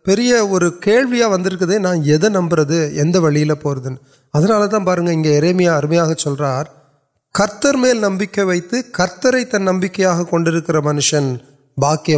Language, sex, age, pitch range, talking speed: Urdu, male, 30-49, 140-180 Hz, 65 wpm